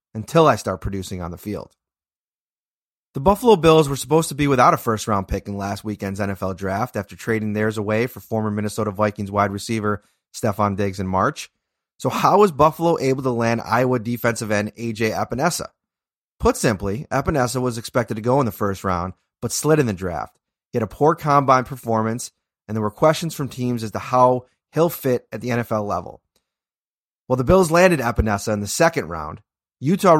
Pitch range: 105-140 Hz